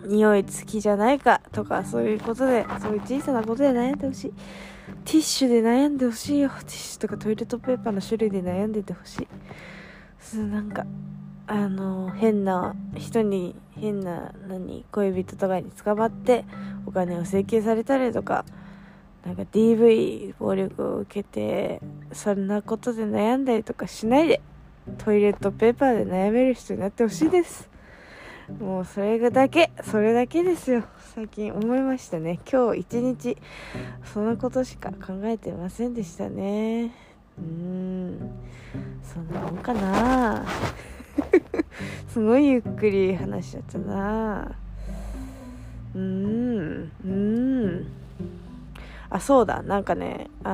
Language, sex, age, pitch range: Japanese, female, 20-39, 190-235 Hz